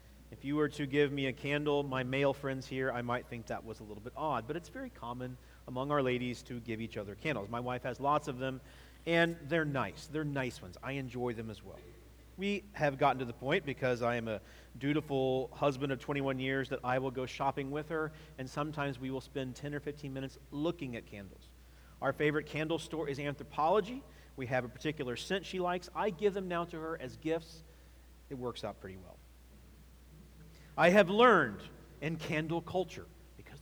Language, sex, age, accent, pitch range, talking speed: English, male, 40-59, American, 120-150 Hz, 210 wpm